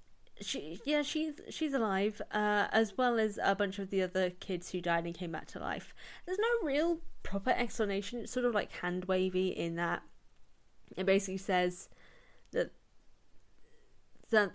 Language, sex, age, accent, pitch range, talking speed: English, female, 10-29, British, 185-245 Hz, 165 wpm